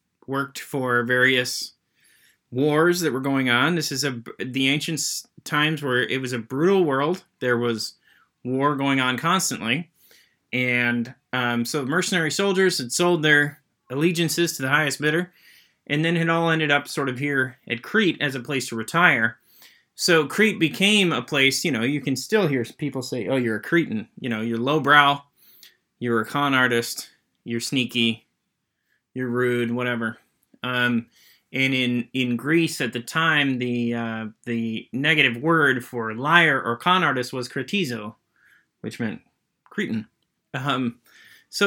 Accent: American